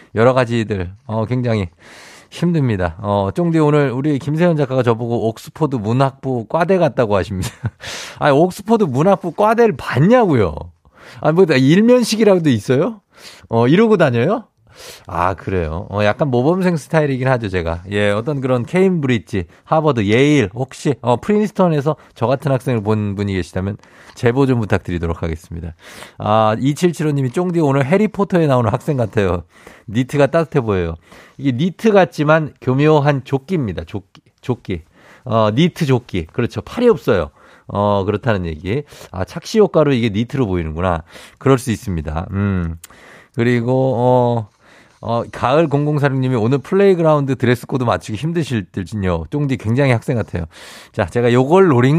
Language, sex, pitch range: Korean, male, 105-155 Hz